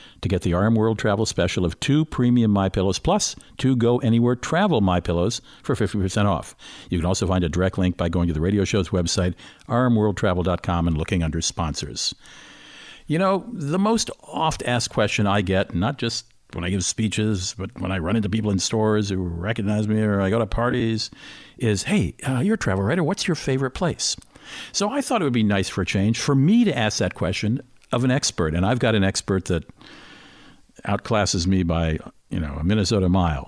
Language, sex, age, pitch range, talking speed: English, male, 60-79, 90-120 Hz, 205 wpm